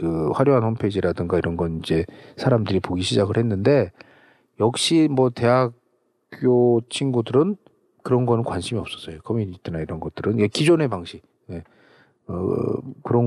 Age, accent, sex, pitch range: 40-59, native, male, 95-130 Hz